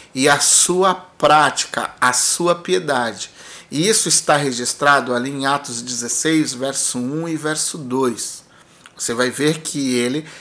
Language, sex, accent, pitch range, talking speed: Portuguese, male, Brazilian, 140-195 Hz, 145 wpm